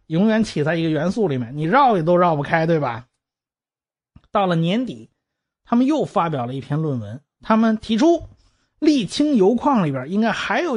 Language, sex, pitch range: Chinese, male, 160-230 Hz